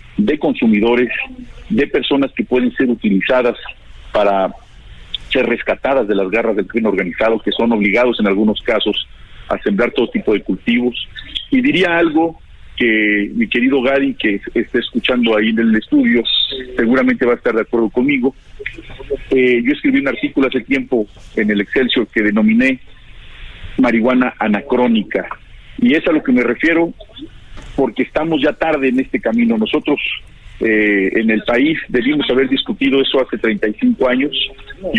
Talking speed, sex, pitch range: 155 wpm, male, 115-150 Hz